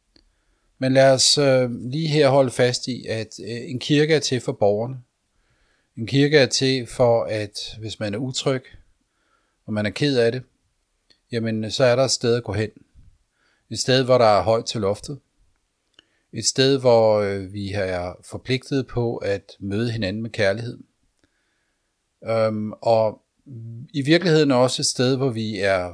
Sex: male